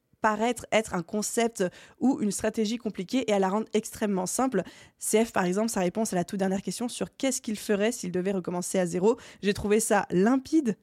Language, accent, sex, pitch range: French, French, female, 190-230 Hz